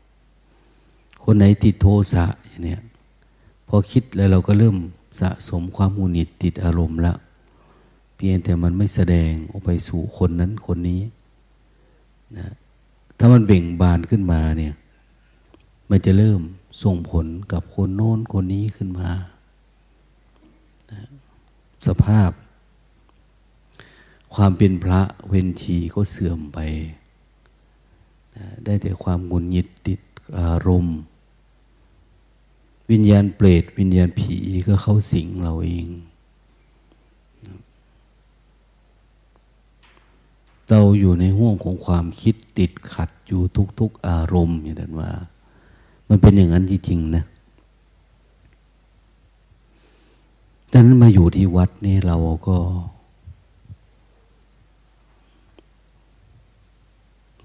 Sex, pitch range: male, 85-105 Hz